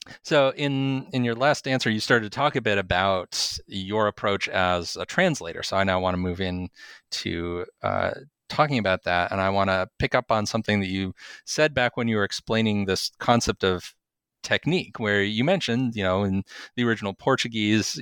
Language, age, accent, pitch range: English, 30-49, American, 95-115 Hz